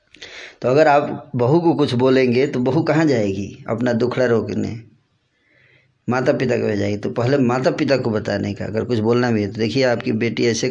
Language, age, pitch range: Hindi, 20-39, 110-130 Hz